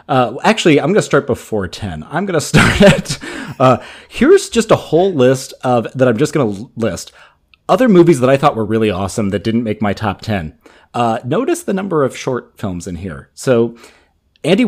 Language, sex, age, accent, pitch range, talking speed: English, male, 30-49, American, 110-135 Hz, 210 wpm